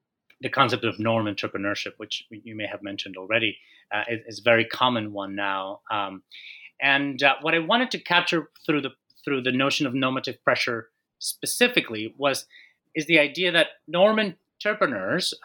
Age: 30-49